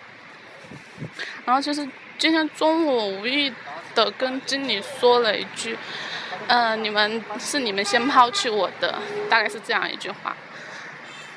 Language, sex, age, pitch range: Chinese, female, 10-29, 220-275 Hz